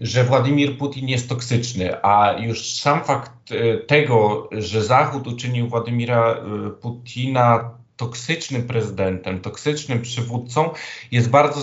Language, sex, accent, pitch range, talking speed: Polish, male, native, 110-135 Hz, 120 wpm